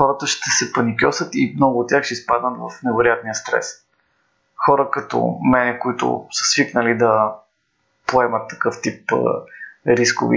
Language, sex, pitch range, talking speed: Bulgarian, male, 115-150 Hz, 140 wpm